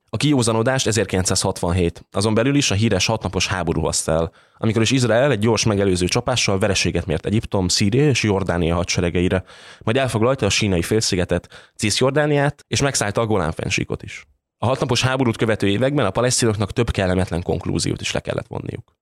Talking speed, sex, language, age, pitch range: 160 wpm, male, Hungarian, 20-39, 90-115 Hz